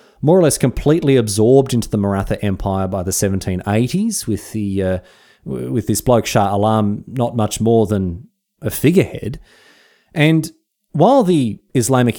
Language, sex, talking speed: English, male, 150 wpm